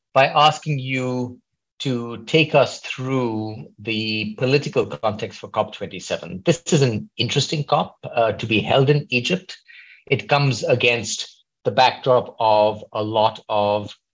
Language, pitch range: English, 110-145 Hz